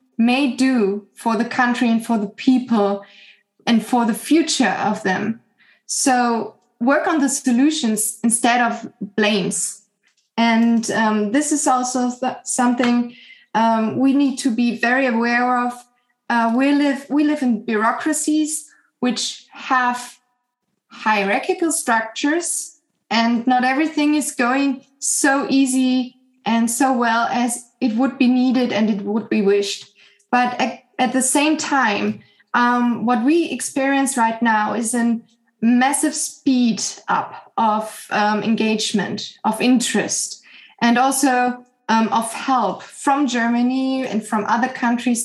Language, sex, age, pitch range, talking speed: German, female, 20-39, 225-270 Hz, 130 wpm